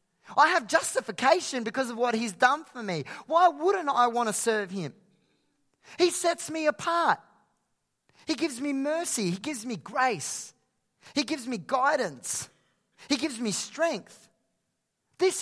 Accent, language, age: Australian, English, 30-49